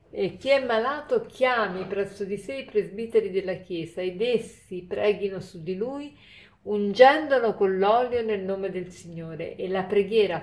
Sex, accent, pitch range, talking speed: female, native, 185-220 Hz, 160 wpm